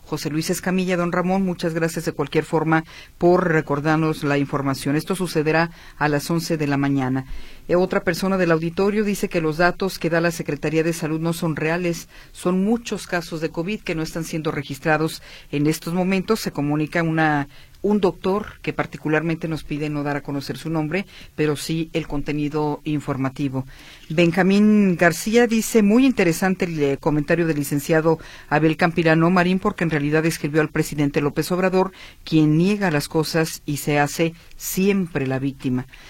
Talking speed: 170 wpm